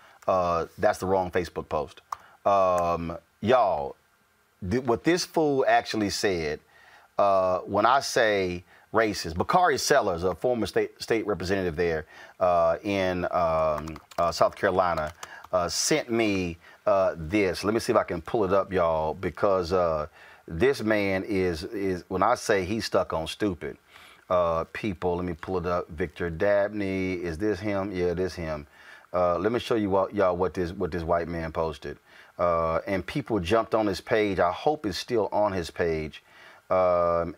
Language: English